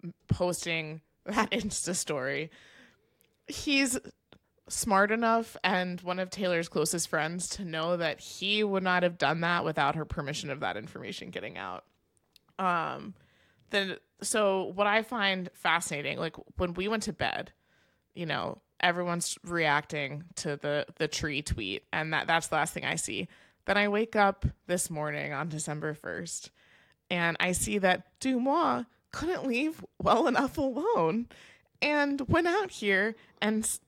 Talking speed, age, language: 150 wpm, 20-39, English